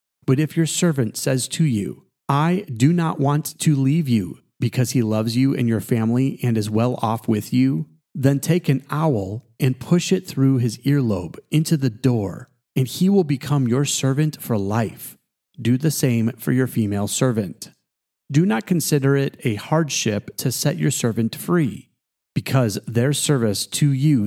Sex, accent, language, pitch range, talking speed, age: male, American, English, 115-145 Hz, 175 wpm, 40-59